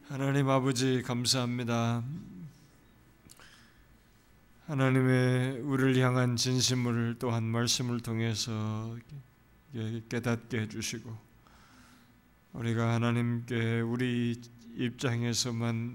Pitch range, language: 115-130 Hz, Korean